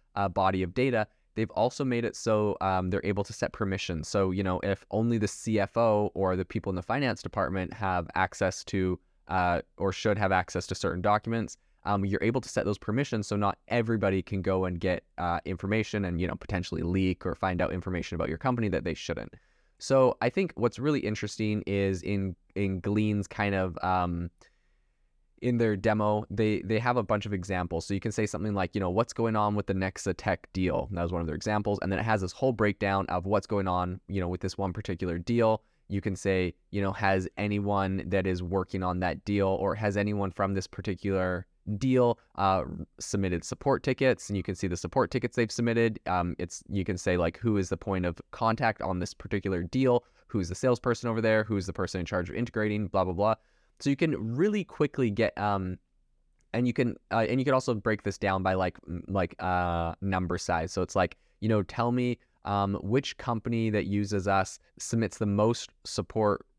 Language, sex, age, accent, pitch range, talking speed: English, male, 20-39, American, 95-110 Hz, 215 wpm